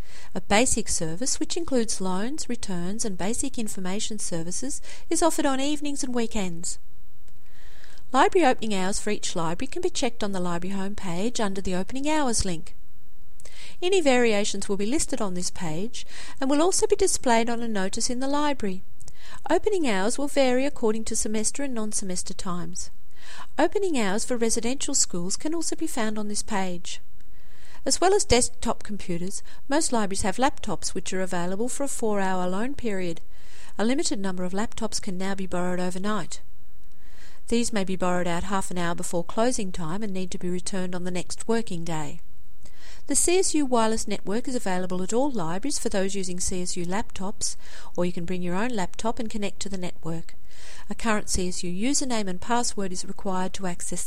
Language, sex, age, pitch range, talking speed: English, female, 40-59, 185-255 Hz, 180 wpm